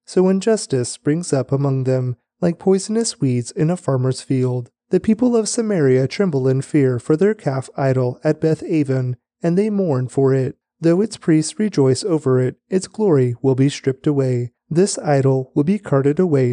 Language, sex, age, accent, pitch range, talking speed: English, male, 30-49, American, 130-170 Hz, 180 wpm